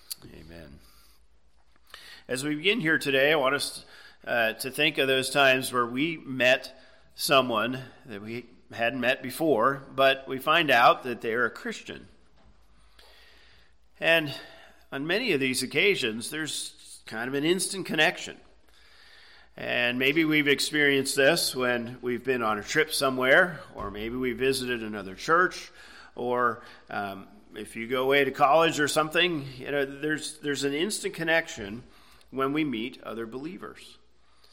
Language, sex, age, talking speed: English, male, 40-59, 150 wpm